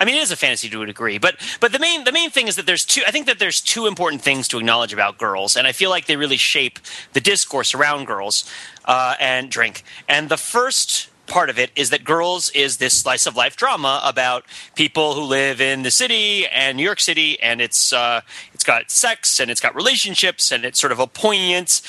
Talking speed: 235 wpm